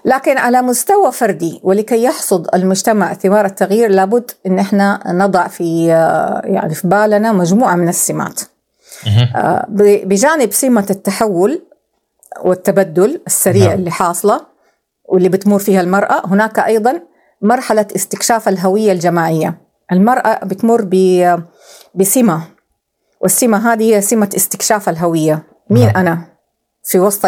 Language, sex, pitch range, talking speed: Arabic, female, 180-225 Hz, 110 wpm